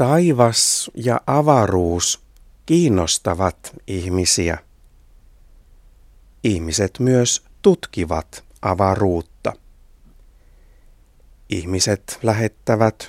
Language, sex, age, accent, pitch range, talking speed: Finnish, male, 60-79, native, 85-115 Hz, 50 wpm